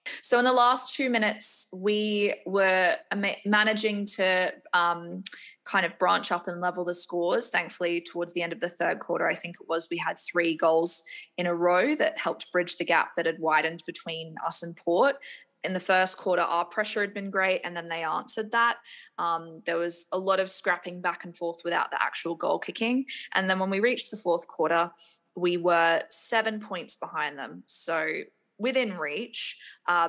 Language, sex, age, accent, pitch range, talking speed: English, female, 20-39, Australian, 175-210 Hz, 195 wpm